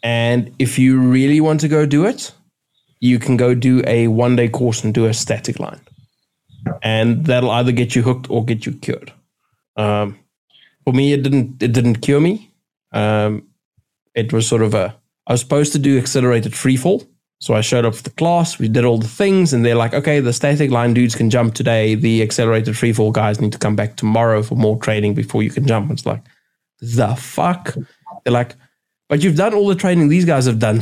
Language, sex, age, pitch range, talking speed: English, male, 20-39, 115-140 Hz, 215 wpm